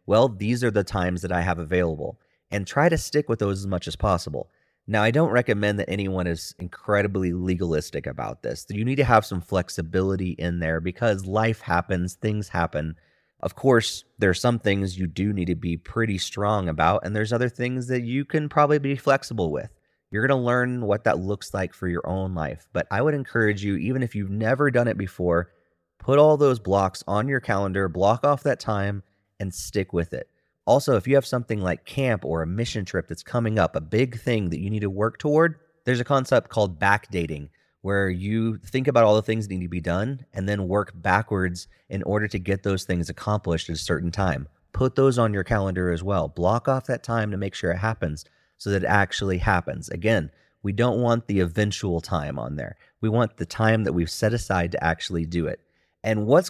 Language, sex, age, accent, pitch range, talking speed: English, male, 30-49, American, 90-115 Hz, 220 wpm